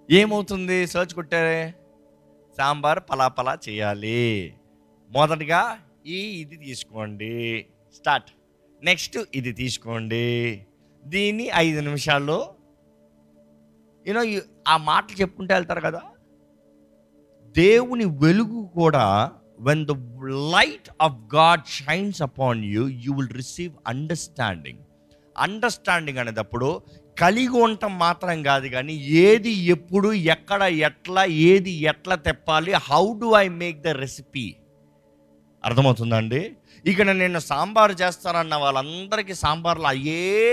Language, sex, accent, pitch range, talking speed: Telugu, male, native, 120-180 Hz, 100 wpm